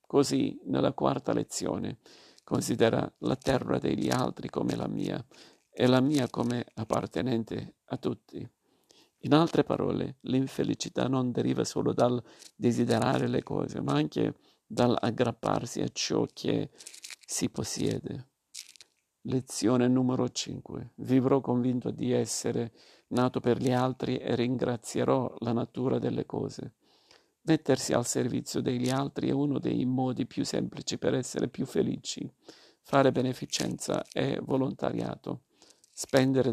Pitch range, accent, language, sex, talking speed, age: 120-130 Hz, native, Italian, male, 125 wpm, 50-69